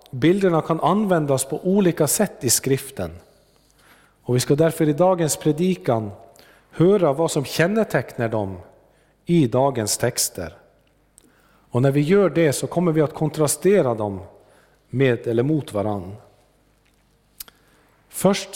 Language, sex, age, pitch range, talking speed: Swedish, male, 40-59, 120-165 Hz, 125 wpm